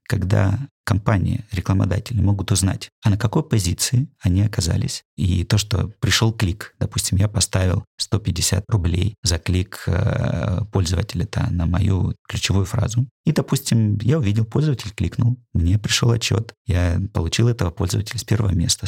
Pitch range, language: 100-120 Hz, Russian